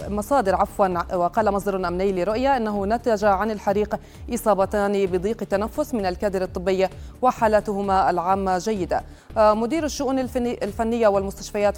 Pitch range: 185-225 Hz